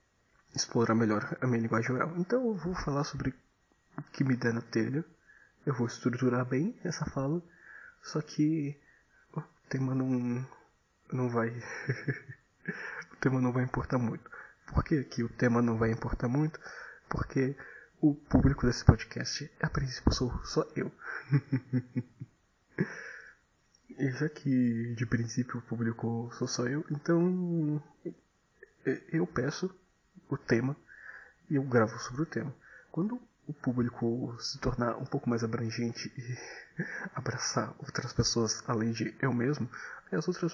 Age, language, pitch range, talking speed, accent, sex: 20-39, Portuguese, 115-145 Hz, 140 wpm, Brazilian, male